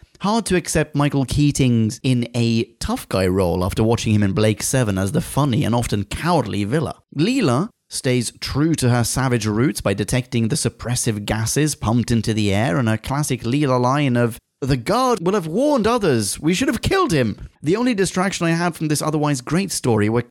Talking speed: 195 wpm